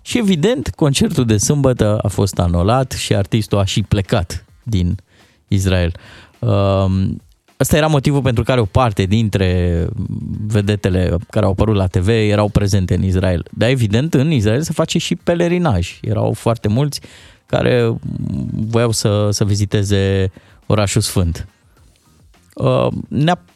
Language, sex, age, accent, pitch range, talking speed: Romanian, male, 20-39, native, 95-135 Hz, 130 wpm